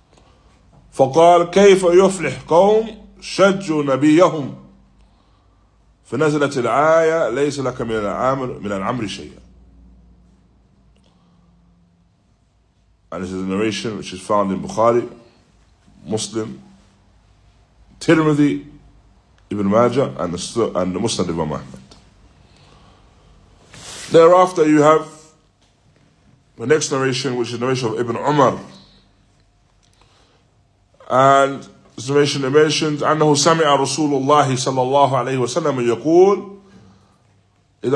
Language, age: English, 20-39